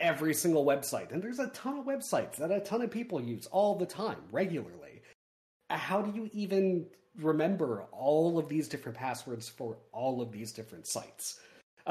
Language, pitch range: English, 120-155 Hz